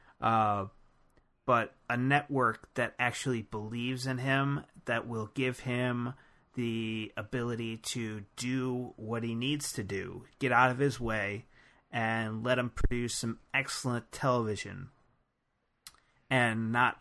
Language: English